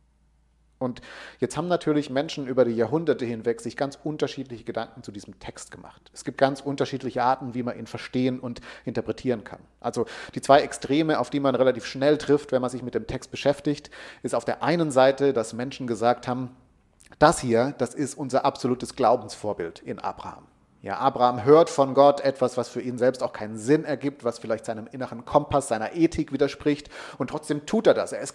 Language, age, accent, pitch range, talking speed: German, 40-59, German, 125-165 Hz, 195 wpm